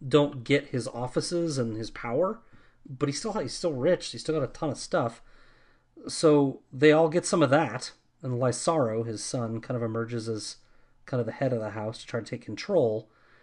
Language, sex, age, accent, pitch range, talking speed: English, male, 30-49, American, 115-135 Hz, 210 wpm